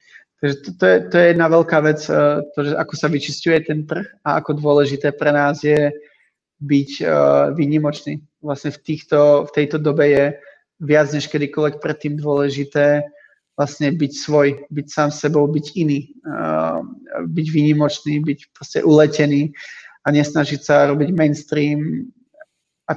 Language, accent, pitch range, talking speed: Czech, native, 145-155 Hz, 145 wpm